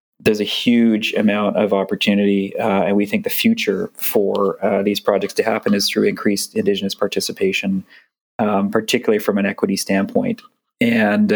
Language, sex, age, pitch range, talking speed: English, male, 20-39, 100-110 Hz, 160 wpm